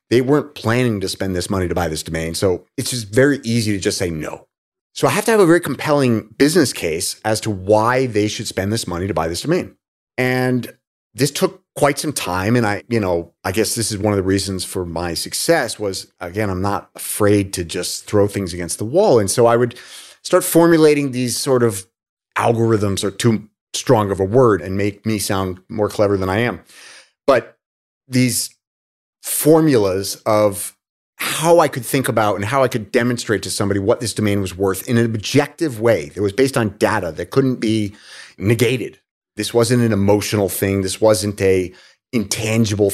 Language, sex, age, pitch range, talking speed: English, male, 30-49, 95-125 Hz, 200 wpm